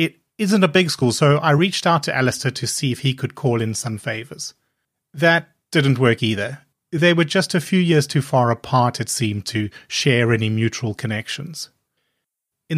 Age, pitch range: 30-49, 115-150 Hz